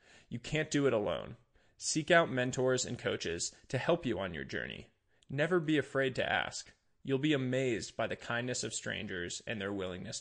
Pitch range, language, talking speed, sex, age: 115-145 Hz, English, 190 wpm, male, 20-39